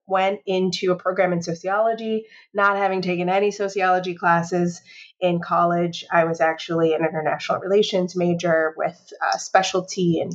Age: 30-49